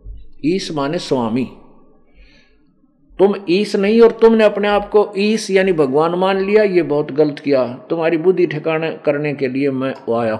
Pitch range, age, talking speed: 115-180 Hz, 50-69, 160 wpm